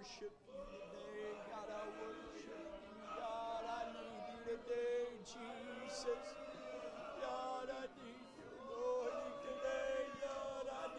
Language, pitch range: English, 165-245 Hz